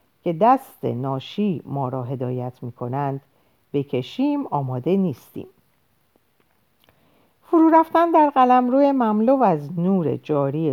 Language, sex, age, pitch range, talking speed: Persian, female, 50-69, 135-205 Hz, 105 wpm